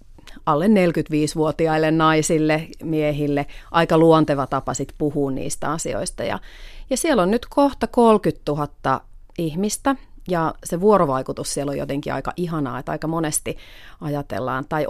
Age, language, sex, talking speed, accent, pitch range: 30-49, Finnish, female, 135 wpm, native, 145-175 Hz